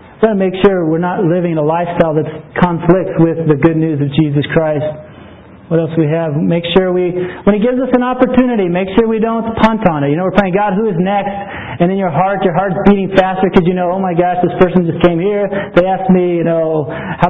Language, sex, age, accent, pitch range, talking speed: English, male, 40-59, American, 155-190 Hz, 250 wpm